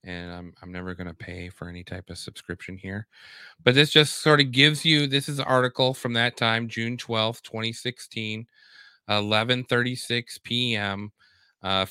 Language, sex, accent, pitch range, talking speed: English, male, American, 100-135 Hz, 165 wpm